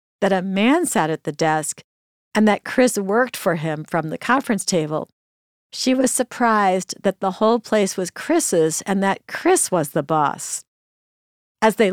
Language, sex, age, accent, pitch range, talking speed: English, female, 50-69, American, 170-225 Hz, 170 wpm